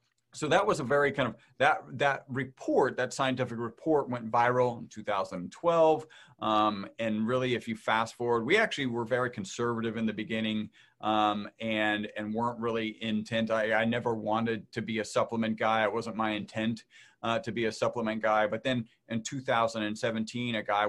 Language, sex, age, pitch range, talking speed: English, male, 30-49, 110-125 Hz, 180 wpm